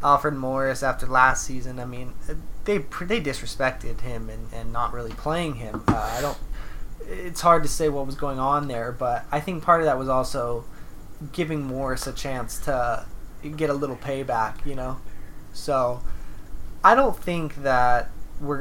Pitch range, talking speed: 125-155 Hz, 175 wpm